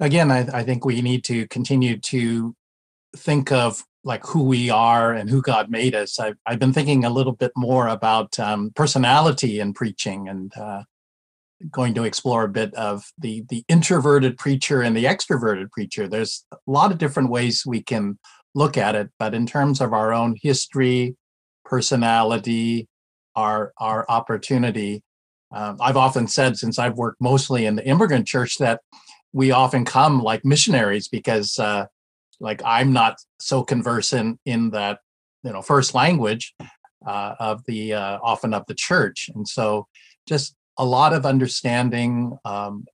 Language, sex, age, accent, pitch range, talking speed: English, male, 50-69, American, 110-130 Hz, 165 wpm